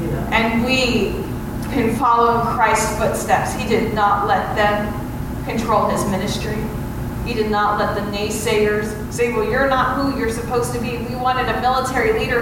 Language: English